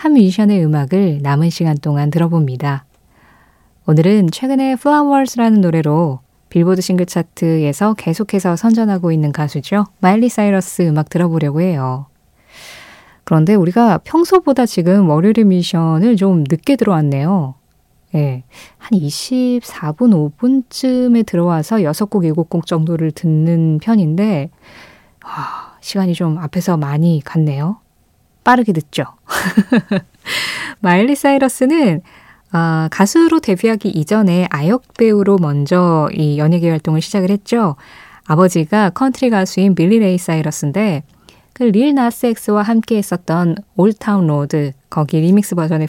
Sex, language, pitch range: female, Korean, 160-220 Hz